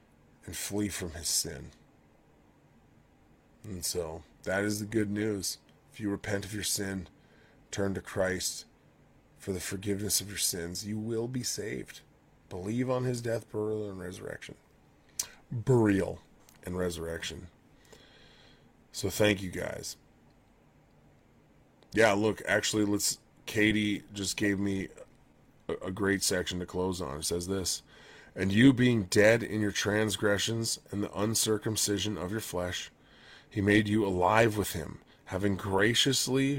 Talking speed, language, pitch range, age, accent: 140 wpm, English, 95-110 Hz, 30-49, American